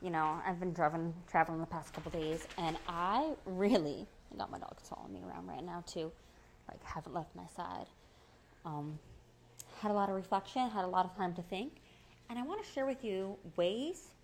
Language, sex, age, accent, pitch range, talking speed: English, female, 20-39, American, 170-245 Hz, 205 wpm